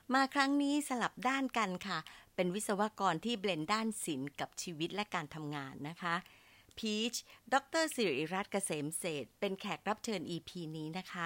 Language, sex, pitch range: Thai, female, 160-215 Hz